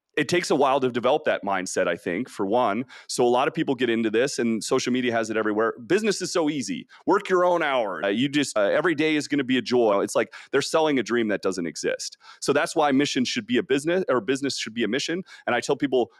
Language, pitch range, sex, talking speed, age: English, 115-160 Hz, male, 270 wpm, 30-49